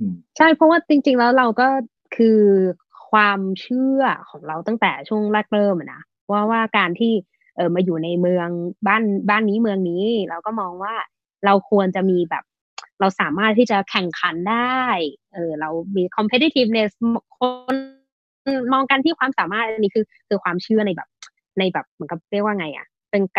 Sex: female